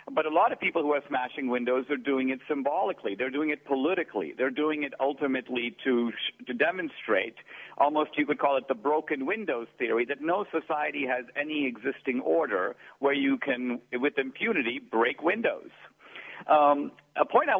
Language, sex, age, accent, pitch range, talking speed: English, male, 50-69, American, 130-170 Hz, 175 wpm